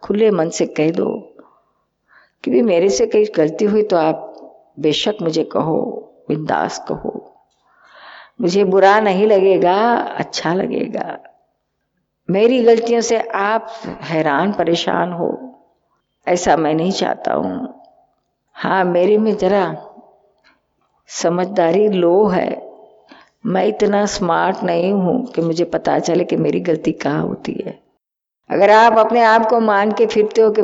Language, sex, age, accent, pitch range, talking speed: Hindi, female, 50-69, native, 180-225 Hz, 135 wpm